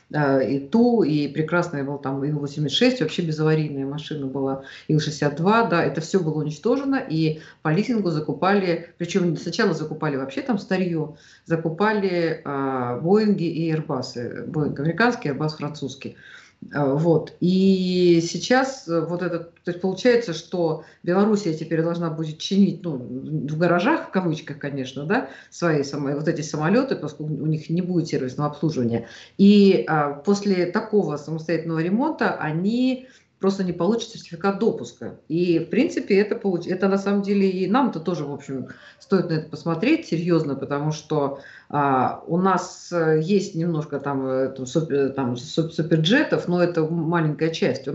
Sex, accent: female, native